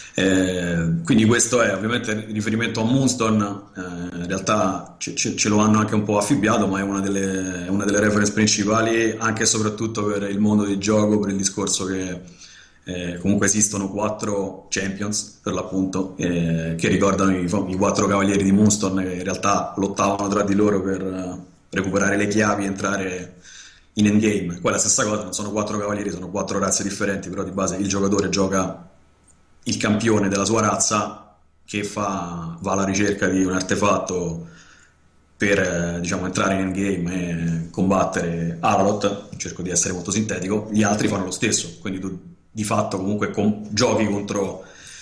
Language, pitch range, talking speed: Italian, 95-105 Hz, 175 wpm